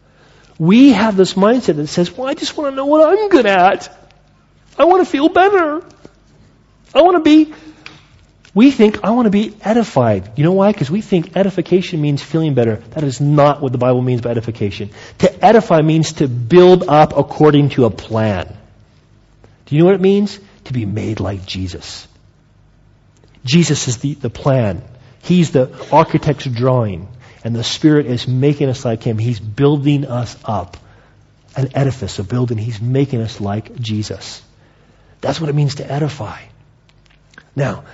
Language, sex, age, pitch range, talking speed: English, male, 40-59, 115-165 Hz, 170 wpm